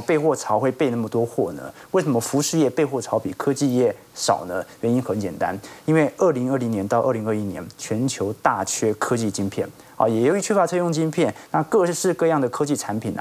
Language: Chinese